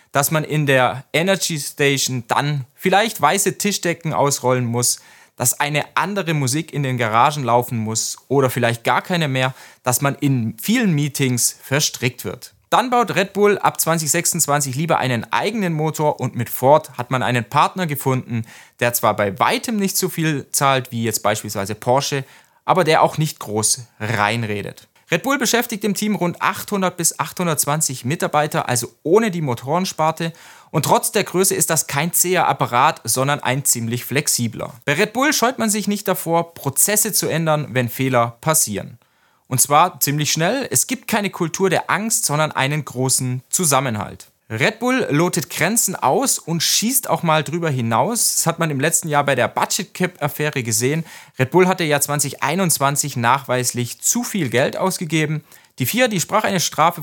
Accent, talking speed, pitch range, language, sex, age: German, 170 wpm, 125-185 Hz, German, male, 30-49